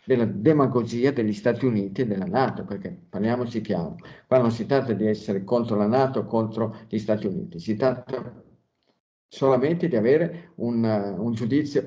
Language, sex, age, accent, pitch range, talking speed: Italian, male, 50-69, native, 110-150 Hz, 160 wpm